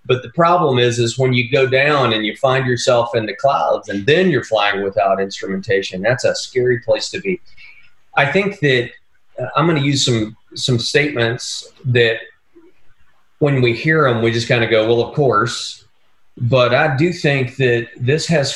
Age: 30-49